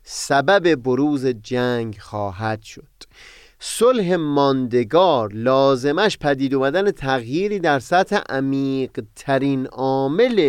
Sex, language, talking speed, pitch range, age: male, Persian, 90 wpm, 125-165 Hz, 30-49